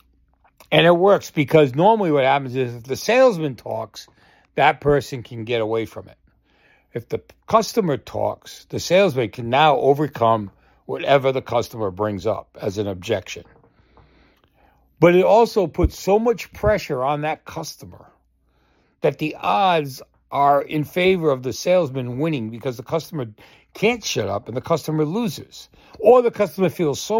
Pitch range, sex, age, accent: 115-165 Hz, male, 60-79, American